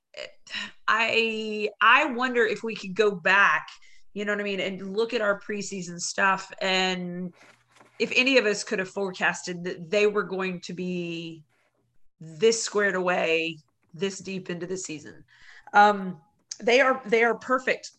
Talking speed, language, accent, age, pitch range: 155 wpm, English, American, 30-49, 175-210 Hz